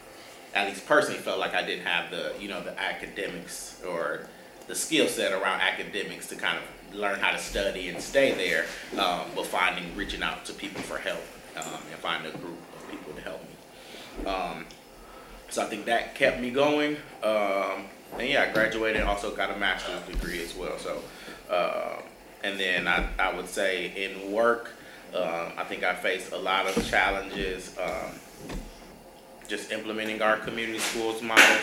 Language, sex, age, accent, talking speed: English, male, 30-49, American, 180 wpm